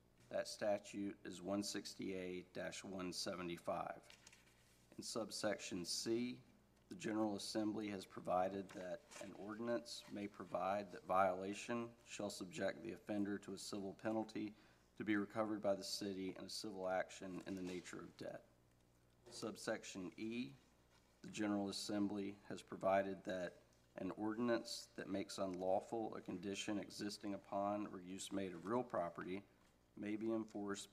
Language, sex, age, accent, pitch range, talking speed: English, male, 40-59, American, 90-110 Hz, 130 wpm